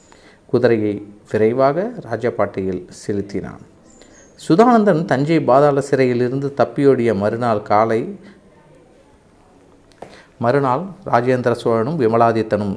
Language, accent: Tamil, native